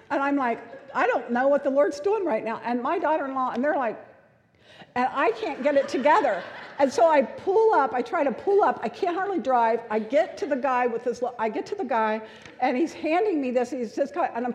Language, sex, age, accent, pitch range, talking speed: English, female, 50-69, American, 235-315 Hz, 245 wpm